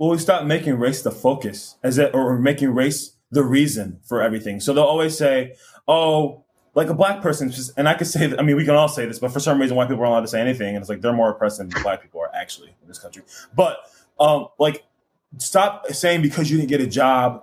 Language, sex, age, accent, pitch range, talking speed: English, male, 20-39, American, 130-160 Hz, 250 wpm